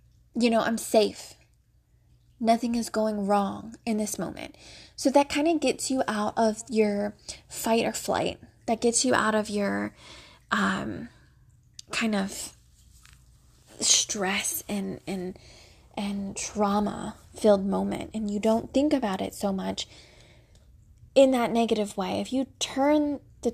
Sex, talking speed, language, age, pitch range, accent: female, 140 wpm, English, 20-39, 210-250 Hz, American